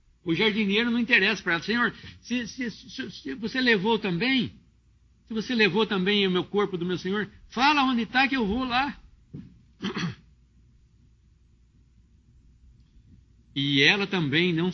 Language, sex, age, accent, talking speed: English, male, 60-79, Brazilian, 145 wpm